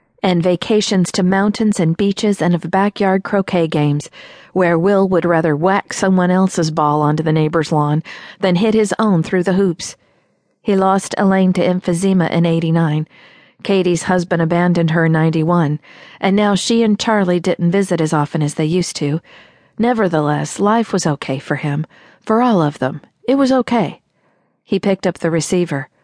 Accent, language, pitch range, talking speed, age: American, English, 165-220 Hz, 170 wpm, 50-69